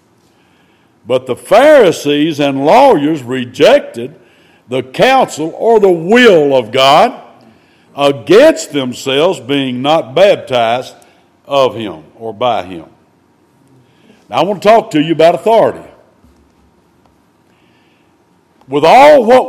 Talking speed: 110 wpm